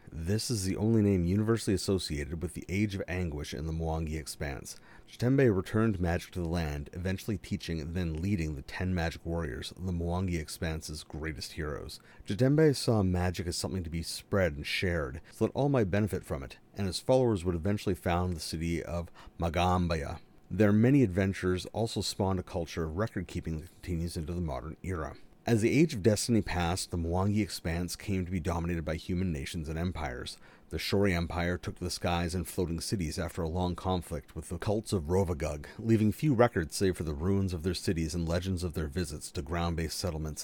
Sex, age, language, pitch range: male, 40-59, English, 85-100 Hz